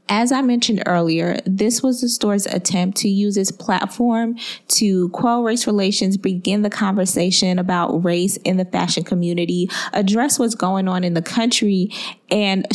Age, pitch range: 20-39, 185-230 Hz